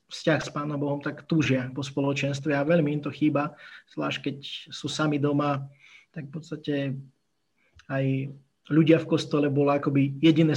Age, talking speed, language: 20-39, 160 wpm, Slovak